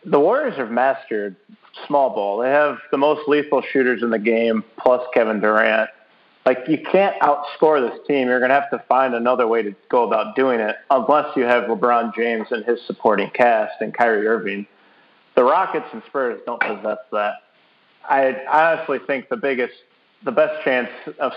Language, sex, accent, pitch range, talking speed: English, male, American, 115-145 Hz, 185 wpm